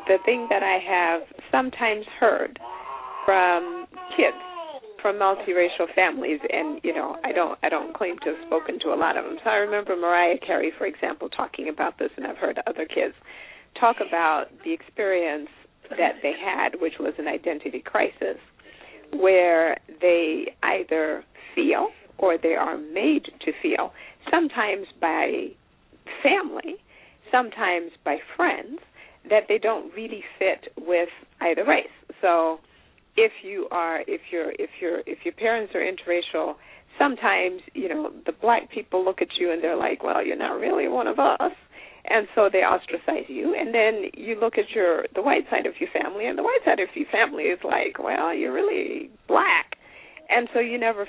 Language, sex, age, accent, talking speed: English, female, 50-69, American, 170 wpm